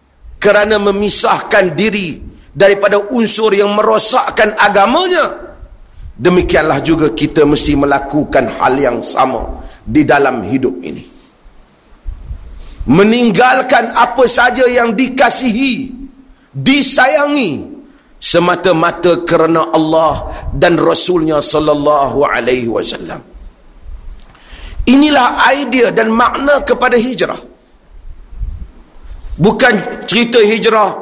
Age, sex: 50-69, male